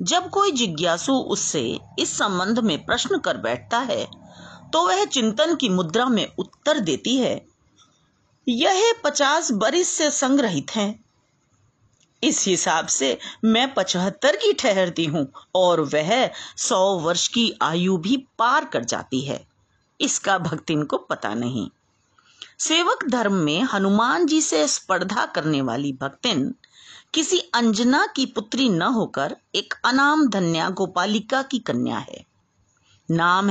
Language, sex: Hindi, female